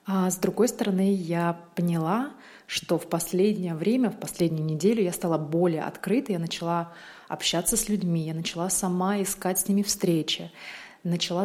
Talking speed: 155 wpm